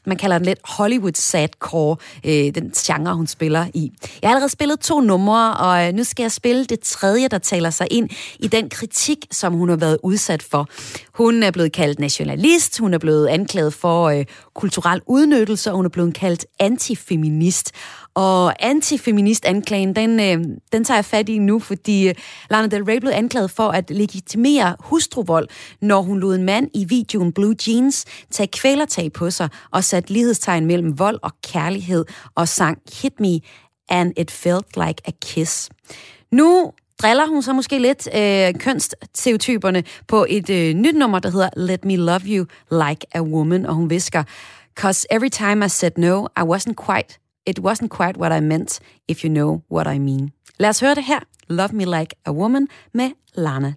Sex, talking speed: female, 180 wpm